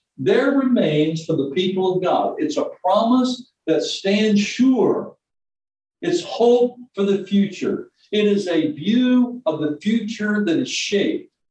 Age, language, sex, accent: 60-79, English, male, American